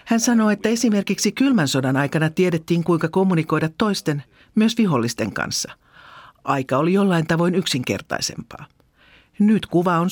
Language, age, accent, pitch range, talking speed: Finnish, 50-69, native, 145-215 Hz, 130 wpm